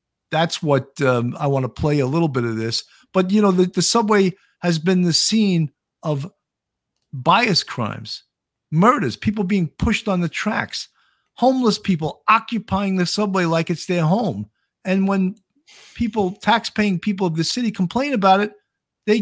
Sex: male